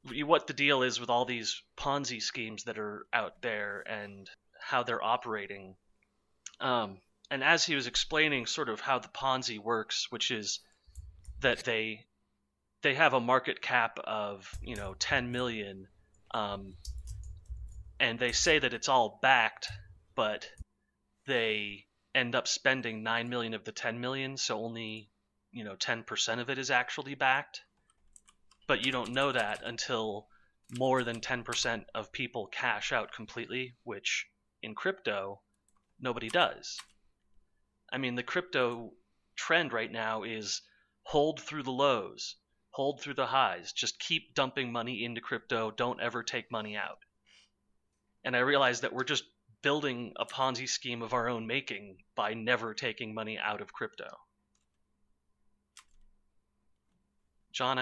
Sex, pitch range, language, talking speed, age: male, 95-130 Hz, English, 145 wpm, 30-49